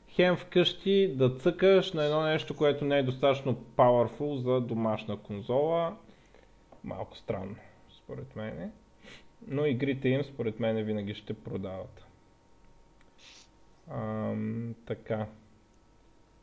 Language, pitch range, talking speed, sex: Bulgarian, 110-135 Hz, 105 wpm, male